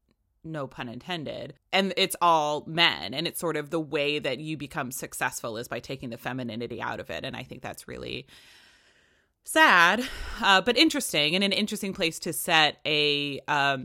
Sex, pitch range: female, 155-230 Hz